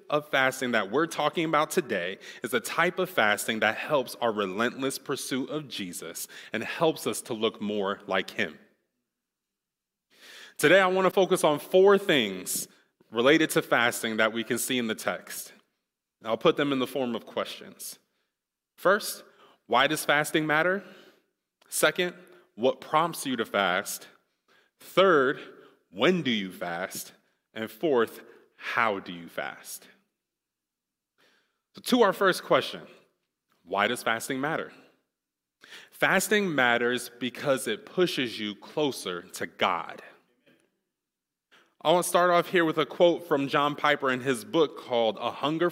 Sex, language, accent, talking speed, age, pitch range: male, English, American, 145 wpm, 30-49, 115-175 Hz